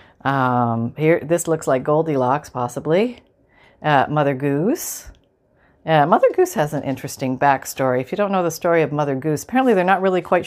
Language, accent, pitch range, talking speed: English, American, 155-210 Hz, 185 wpm